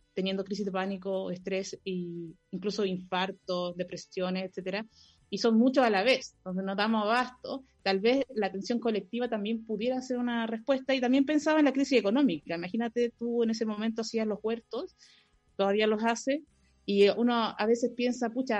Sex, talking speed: female, 175 wpm